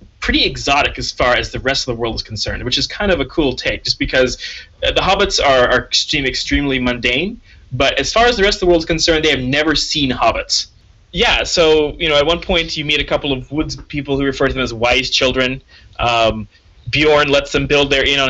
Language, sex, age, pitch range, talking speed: English, male, 20-39, 120-150 Hz, 245 wpm